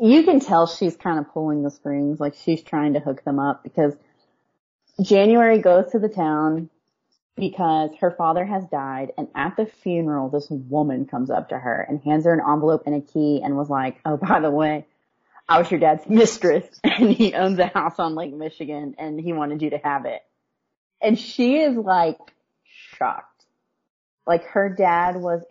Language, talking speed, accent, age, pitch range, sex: English, 190 wpm, American, 30-49, 150-180 Hz, female